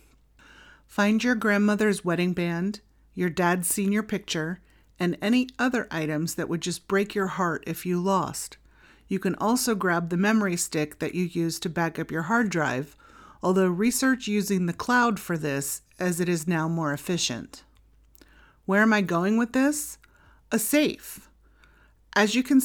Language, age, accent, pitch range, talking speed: English, 30-49, American, 175-220 Hz, 165 wpm